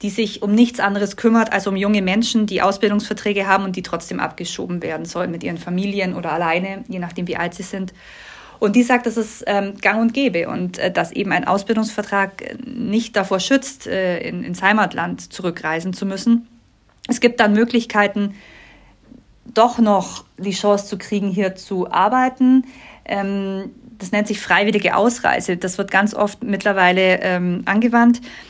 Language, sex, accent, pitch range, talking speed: German, female, German, 190-230 Hz, 170 wpm